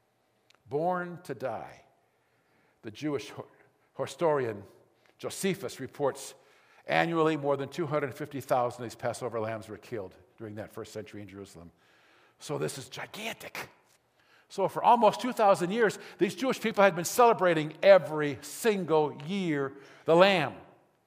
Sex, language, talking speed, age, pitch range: male, English, 125 wpm, 50-69, 150-220 Hz